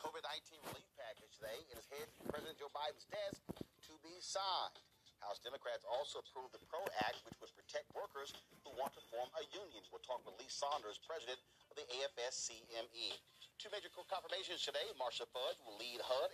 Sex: male